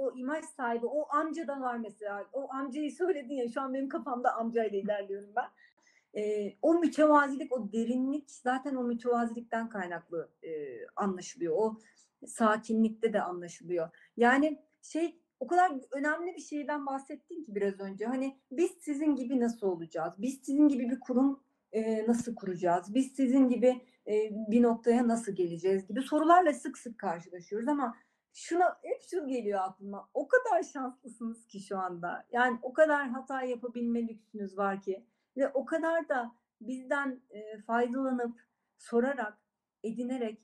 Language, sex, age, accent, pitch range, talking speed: Turkish, female, 40-59, native, 210-270 Hz, 150 wpm